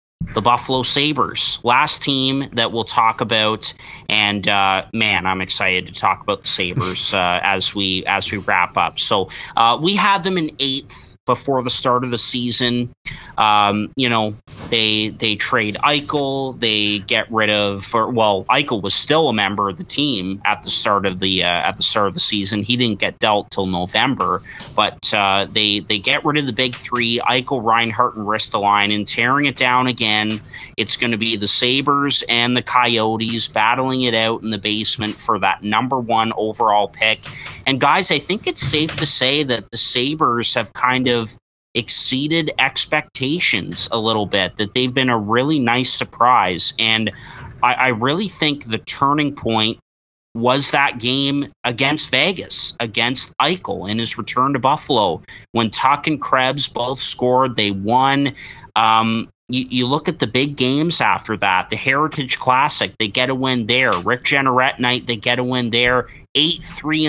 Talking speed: 180 wpm